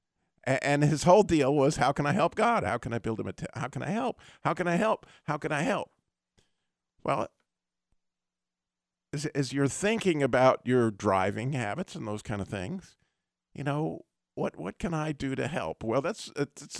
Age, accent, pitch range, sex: 50-69, American, 115-145 Hz, male